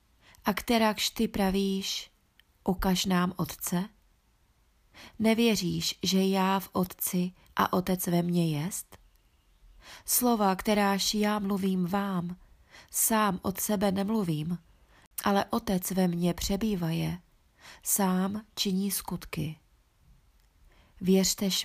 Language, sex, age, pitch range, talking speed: Czech, female, 30-49, 180-200 Hz, 95 wpm